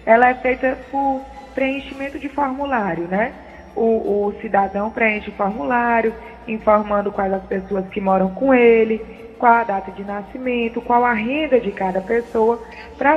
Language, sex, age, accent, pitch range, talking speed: Portuguese, female, 20-39, Brazilian, 205-255 Hz, 155 wpm